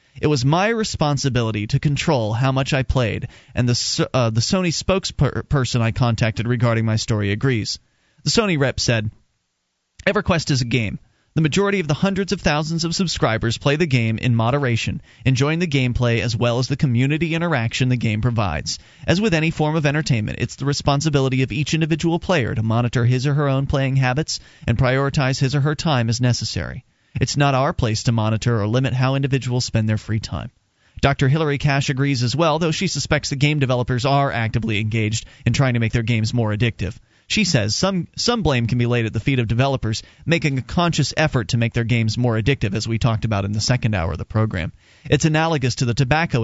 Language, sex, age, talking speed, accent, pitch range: English, male, 30-49, 210 wpm, American, 115-150 Hz